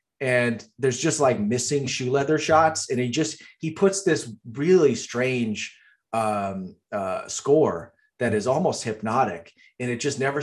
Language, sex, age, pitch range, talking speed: English, male, 30-49, 125-155 Hz, 155 wpm